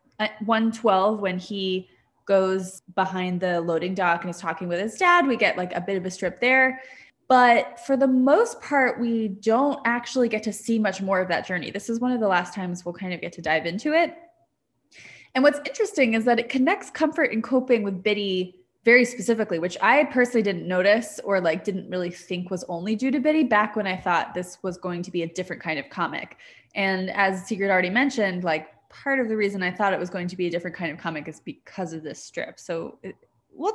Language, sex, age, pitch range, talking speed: English, female, 20-39, 180-240 Hz, 225 wpm